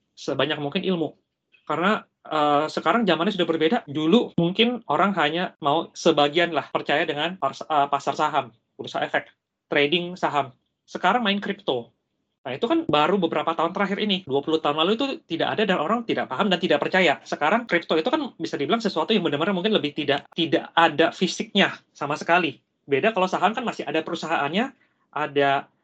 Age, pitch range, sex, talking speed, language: 20-39, 150-195 Hz, male, 175 wpm, Indonesian